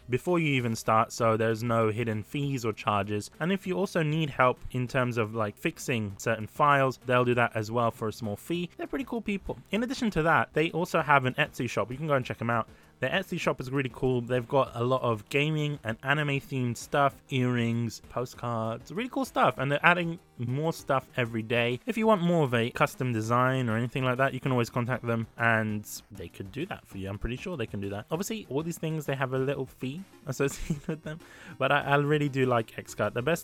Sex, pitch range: male, 115-145 Hz